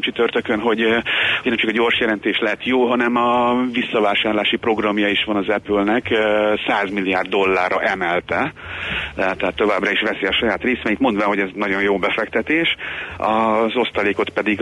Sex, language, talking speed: male, Hungarian, 160 wpm